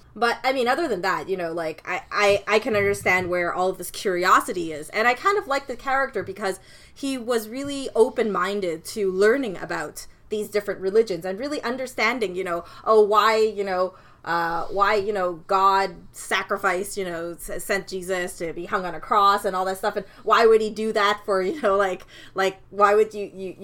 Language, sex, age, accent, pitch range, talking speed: English, female, 20-39, American, 180-215 Hz, 210 wpm